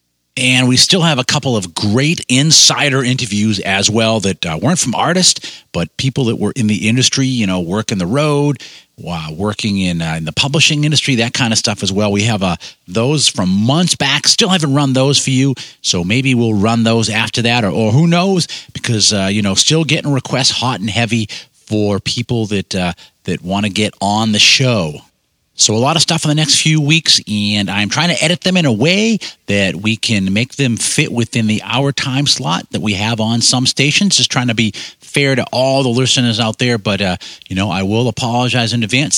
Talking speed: 220 wpm